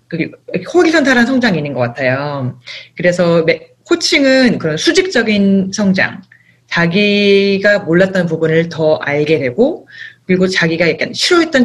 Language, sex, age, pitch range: Korean, female, 30-49, 170-245 Hz